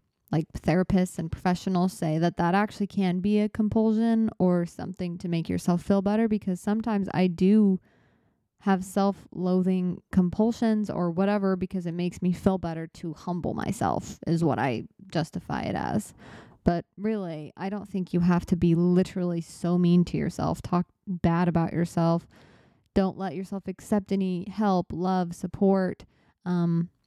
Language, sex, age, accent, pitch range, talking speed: English, female, 20-39, American, 175-205 Hz, 155 wpm